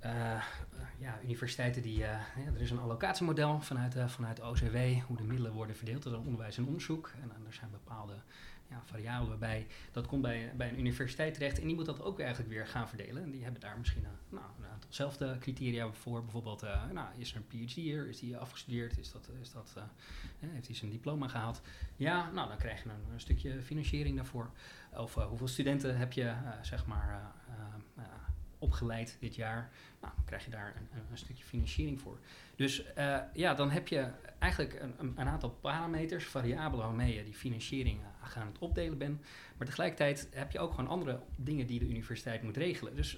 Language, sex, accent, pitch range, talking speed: Dutch, male, Dutch, 110-135 Hz, 205 wpm